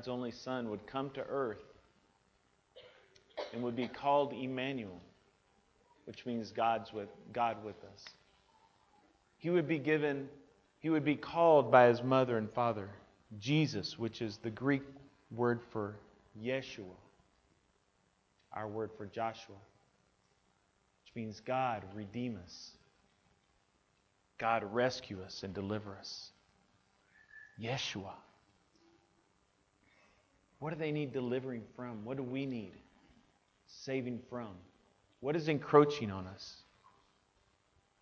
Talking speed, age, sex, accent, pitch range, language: 115 wpm, 30-49, male, American, 100-140 Hz, English